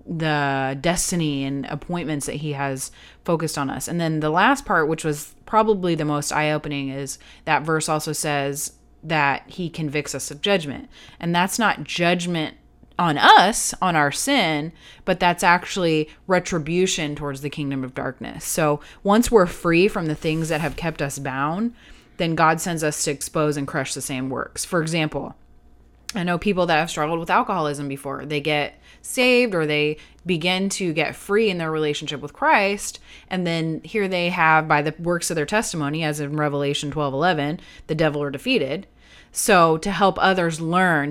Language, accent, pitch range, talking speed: English, American, 145-180 Hz, 180 wpm